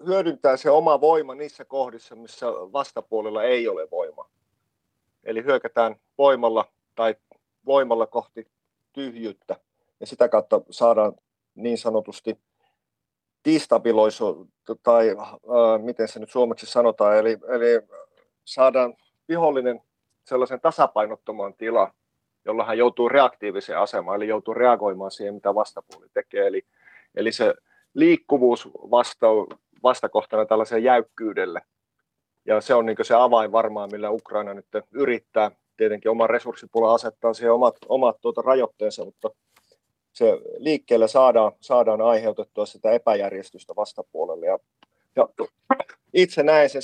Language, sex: Finnish, male